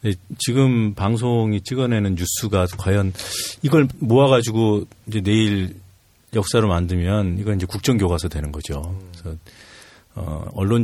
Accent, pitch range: native, 90-115 Hz